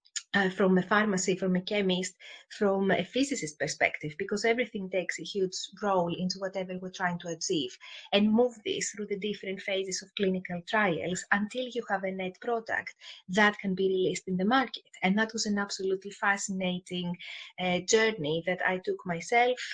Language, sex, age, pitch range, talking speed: English, female, 30-49, 185-215 Hz, 175 wpm